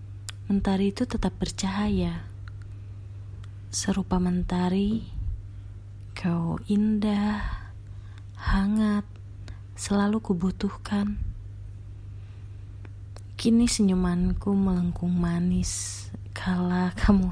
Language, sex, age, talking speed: Indonesian, female, 30-49, 60 wpm